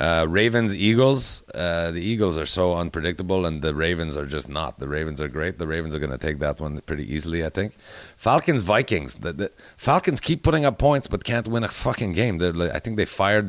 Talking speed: 220 wpm